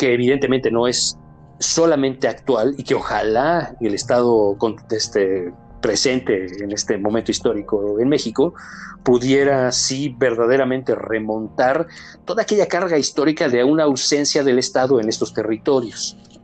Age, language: 50-69, Spanish